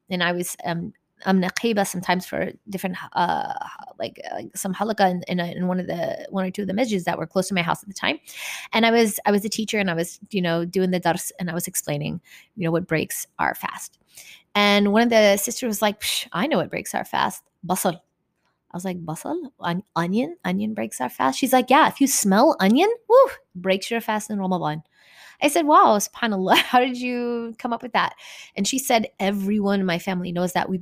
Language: English